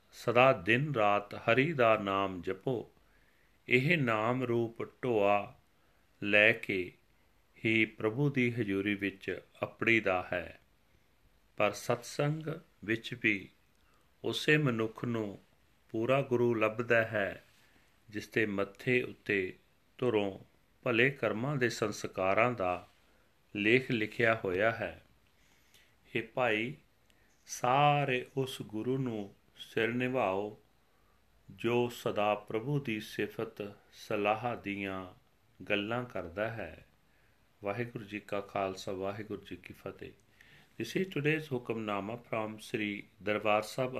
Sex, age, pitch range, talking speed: male, 40-59, 100-125 Hz, 95 wpm